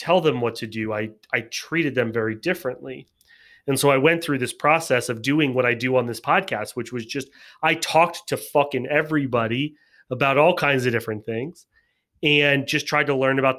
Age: 30-49